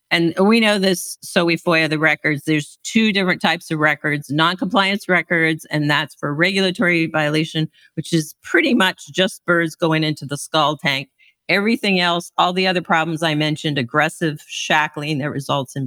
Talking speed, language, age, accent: 175 wpm, English, 50-69, American